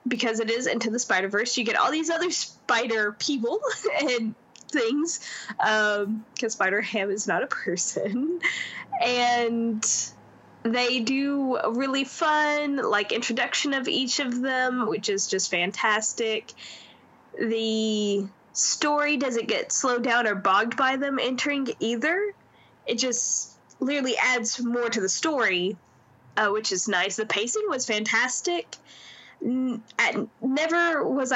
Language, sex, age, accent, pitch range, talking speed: English, female, 10-29, American, 210-275 Hz, 130 wpm